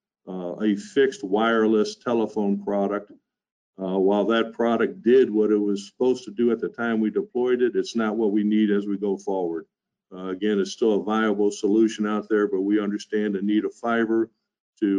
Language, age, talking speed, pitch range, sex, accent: English, 50-69, 195 wpm, 100-110 Hz, male, American